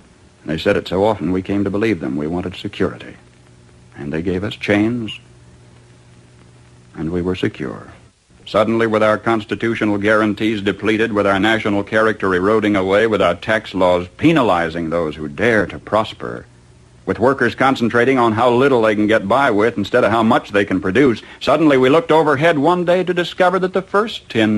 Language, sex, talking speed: English, male, 180 wpm